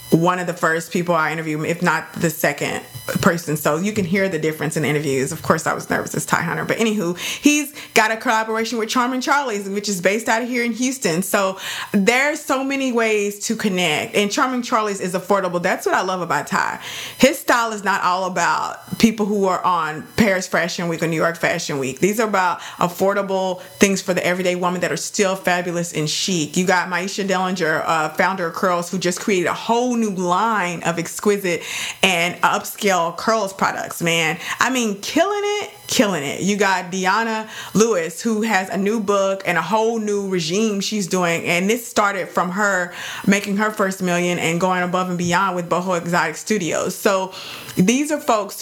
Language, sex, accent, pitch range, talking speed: English, female, American, 175-215 Hz, 200 wpm